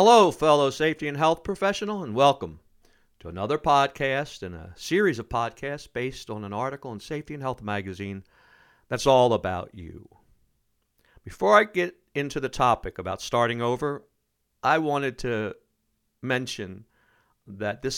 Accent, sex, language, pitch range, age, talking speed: American, male, English, 105-150 Hz, 60-79, 145 wpm